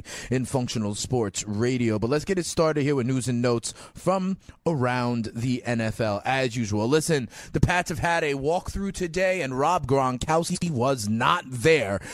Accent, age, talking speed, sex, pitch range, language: American, 30-49, 170 wpm, male, 125-155 Hz, English